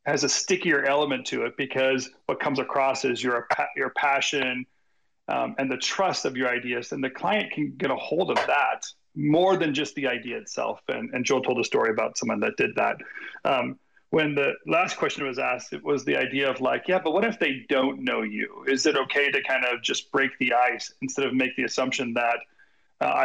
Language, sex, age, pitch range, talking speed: English, male, 40-59, 125-145 Hz, 220 wpm